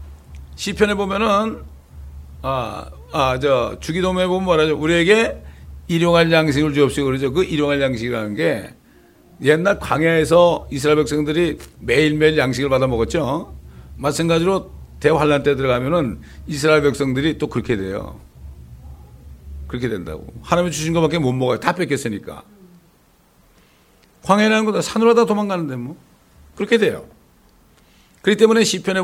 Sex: male